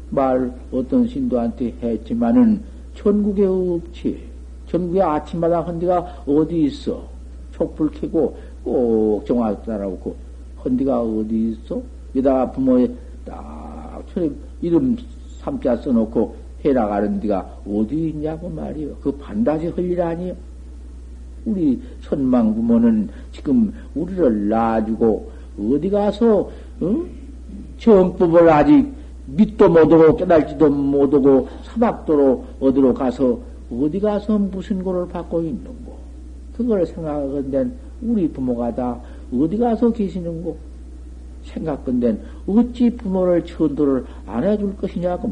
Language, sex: Korean, male